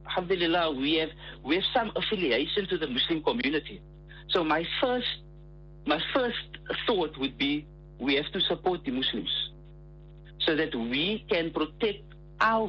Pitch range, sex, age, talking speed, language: 155-190 Hz, male, 60-79, 145 wpm, English